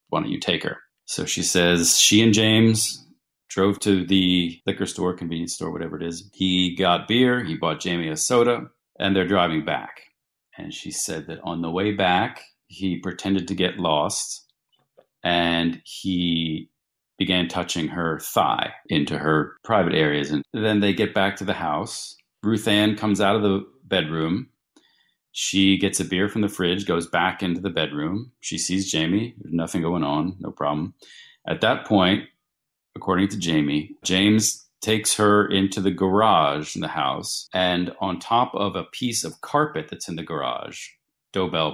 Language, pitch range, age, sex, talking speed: English, 85-100 Hz, 40-59, male, 175 wpm